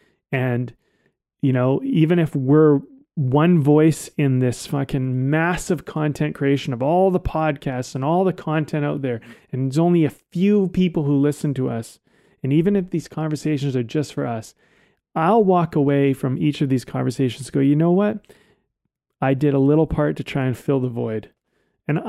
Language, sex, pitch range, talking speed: English, male, 130-155 Hz, 185 wpm